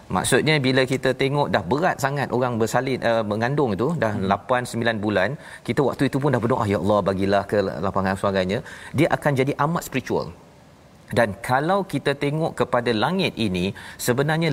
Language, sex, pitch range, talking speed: Malayalam, male, 105-140 Hz, 170 wpm